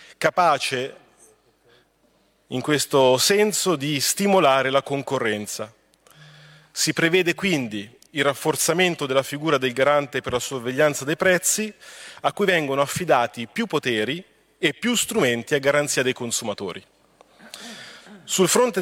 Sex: male